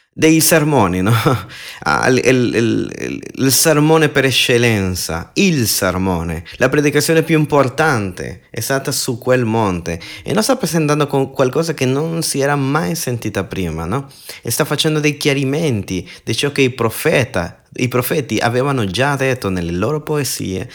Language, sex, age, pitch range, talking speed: Italian, male, 30-49, 105-150 Hz, 155 wpm